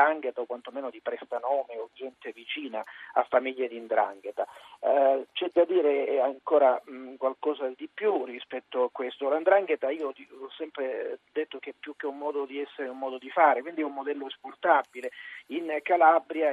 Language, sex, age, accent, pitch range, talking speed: Italian, male, 40-59, native, 135-175 Hz, 175 wpm